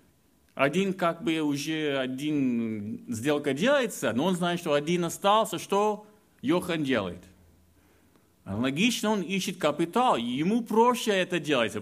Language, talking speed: Russian, 120 wpm